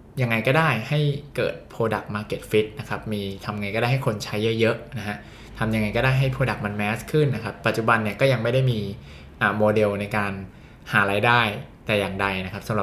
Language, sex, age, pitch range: Thai, male, 20-39, 105-125 Hz